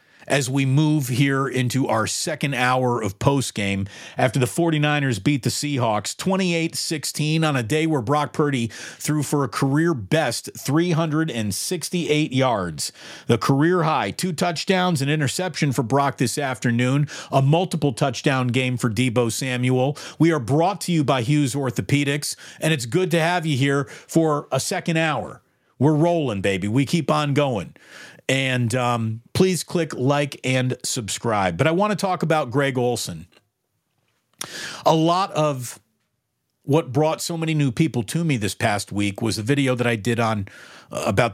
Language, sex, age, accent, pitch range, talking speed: English, male, 40-59, American, 115-155 Hz, 165 wpm